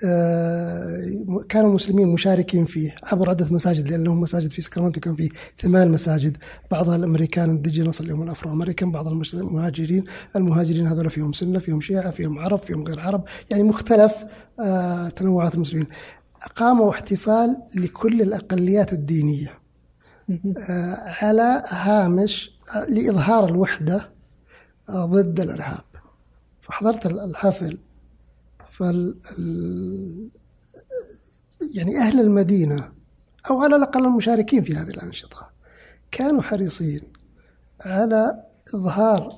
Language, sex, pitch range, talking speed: Arabic, male, 165-205 Hz, 100 wpm